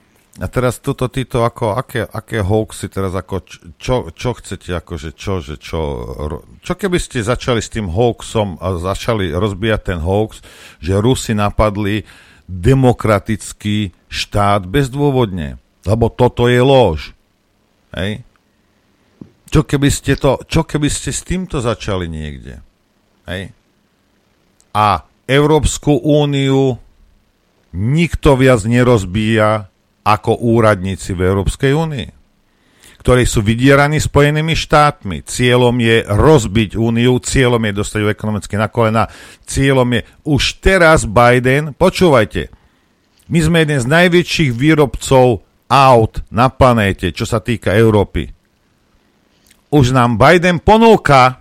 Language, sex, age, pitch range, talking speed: Slovak, male, 50-69, 95-130 Hz, 120 wpm